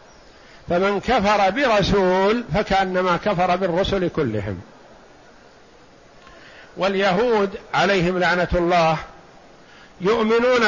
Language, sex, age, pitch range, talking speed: Arabic, male, 50-69, 170-210 Hz, 65 wpm